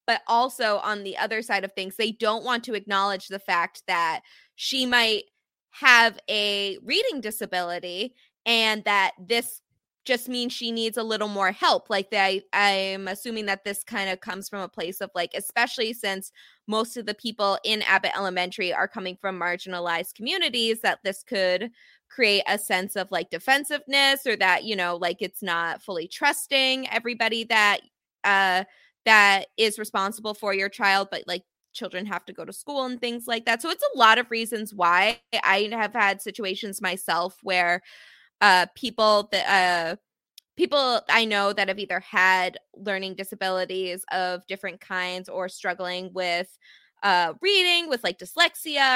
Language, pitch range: English, 190-235 Hz